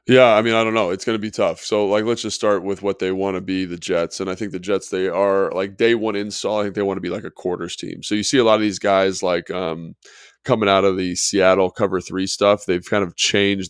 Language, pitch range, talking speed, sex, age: English, 90-105 Hz, 300 wpm, male, 20-39